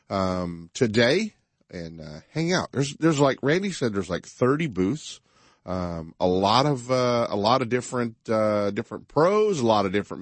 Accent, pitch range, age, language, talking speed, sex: American, 95-140 Hz, 40-59, English, 180 wpm, male